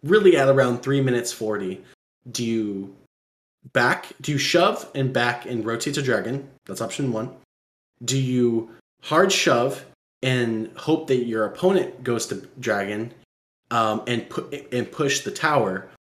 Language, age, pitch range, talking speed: English, 20-39, 110-135 Hz, 145 wpm